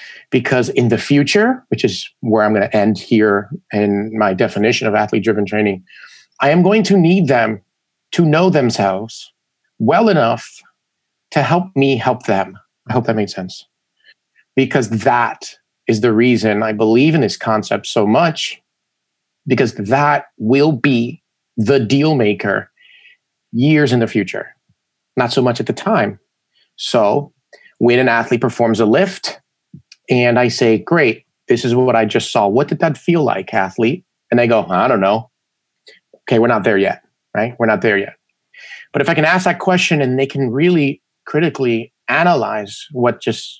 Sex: male